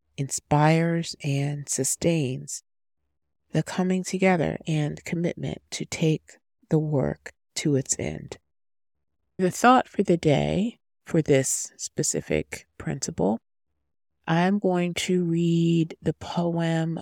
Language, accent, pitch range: English, American, 130-165 Hz